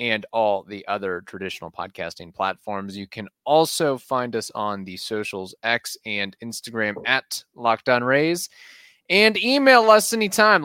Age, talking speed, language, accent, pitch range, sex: 30-49, 140 wpm, English, American, 115-165 Hz, male